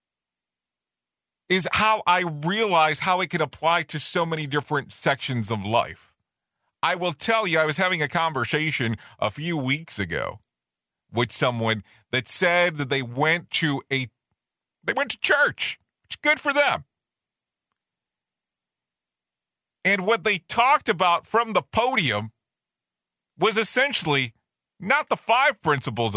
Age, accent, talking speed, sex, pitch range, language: 40-59, American, 135 wpm, male, 115-175 Hz, English